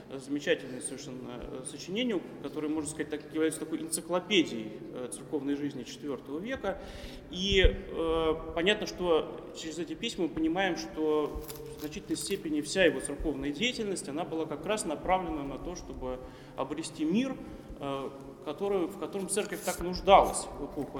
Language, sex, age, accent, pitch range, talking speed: Russian, male, 20-39, native, 140-180 Hz, 140 wpm